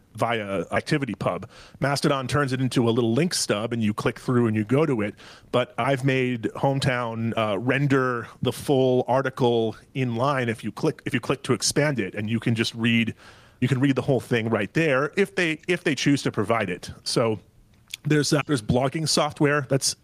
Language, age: English, 30-49